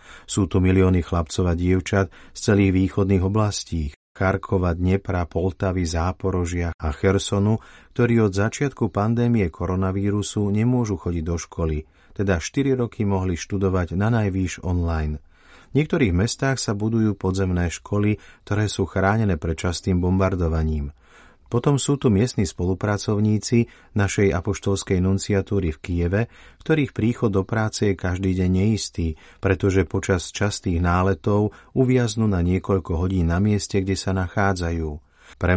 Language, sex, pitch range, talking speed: Slovak, male, 90-105 Hz, 130 wpm